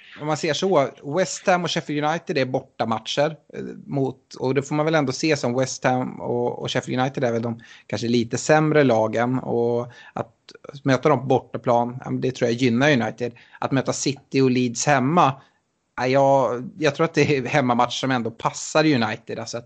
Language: Swedish